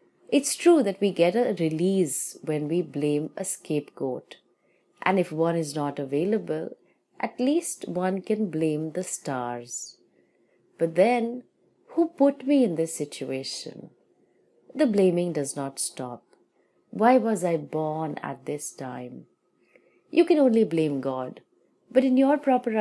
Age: 30-49